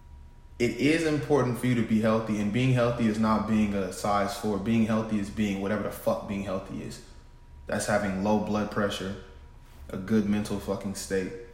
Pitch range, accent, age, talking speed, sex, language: 95-115 Hz, American, 20-39, 190 wpm, male, English